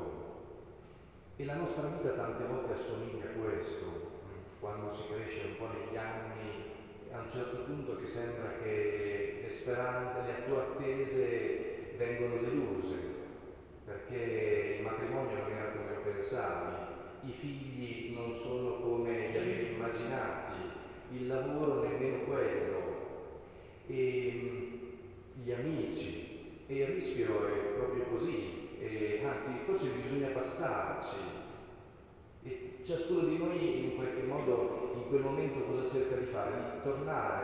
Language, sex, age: Italian, male, 40-59